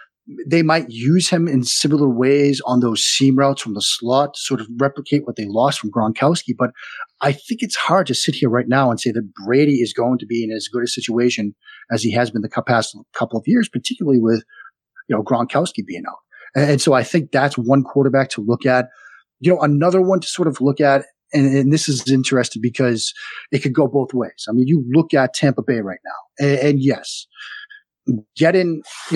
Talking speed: 220 wpm